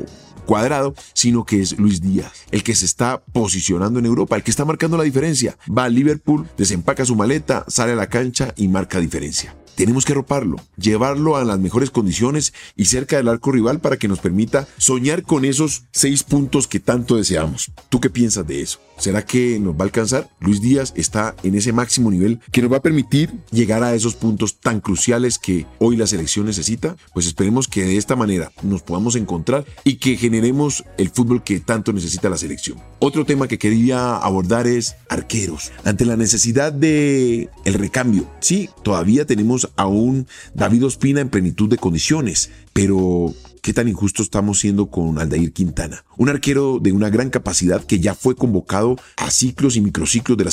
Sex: male